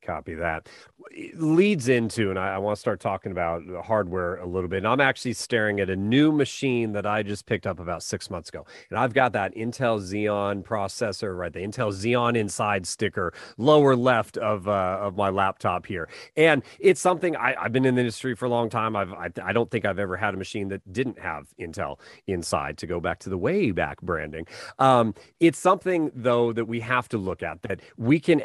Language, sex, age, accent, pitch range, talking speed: English, male, 30-49, American, 100-125 Hz, 220 wpm